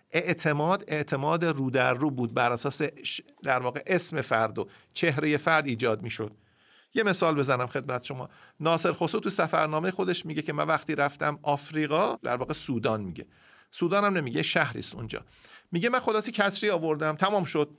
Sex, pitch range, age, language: male, 150-210 Hz, 50-69, Persian